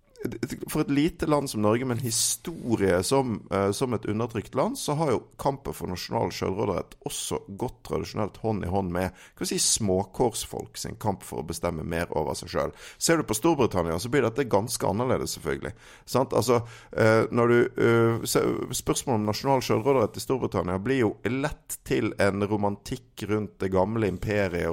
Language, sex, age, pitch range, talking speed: English, male, 50-69, 90-120 Hz, 165 wpm